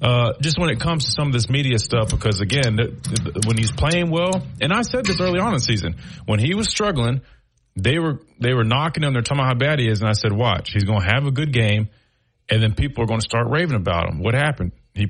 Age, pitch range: 30-49, 115-145 Hz